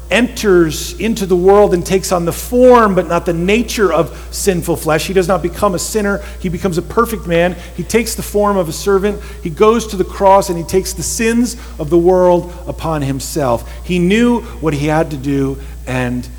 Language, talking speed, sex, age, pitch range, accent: English, 210 wpm, male, 40-59, 120-185 Hz, American